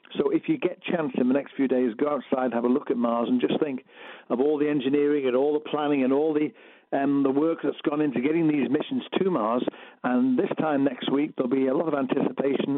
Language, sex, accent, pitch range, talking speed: English, male, British, 130-170 Hz, 250 wpm